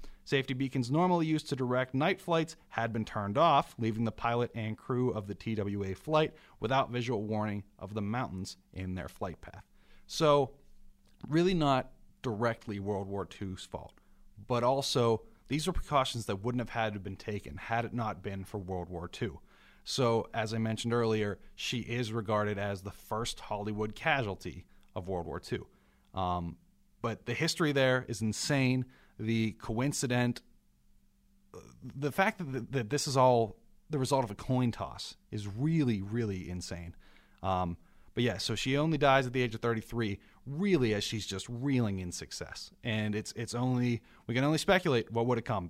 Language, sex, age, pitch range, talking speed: English, male, 30-49, 100-130 Hz, 175 wpm